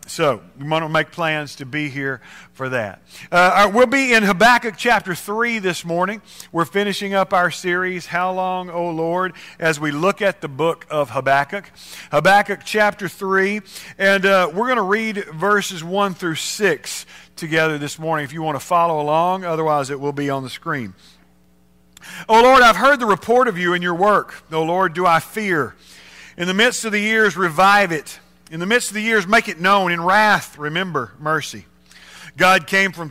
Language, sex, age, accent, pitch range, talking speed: English, male, 50-69, American, 160-215 Hz, 190 wpm